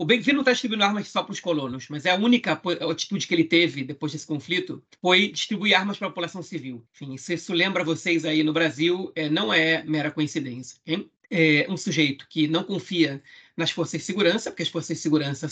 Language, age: Portuguese, 40-59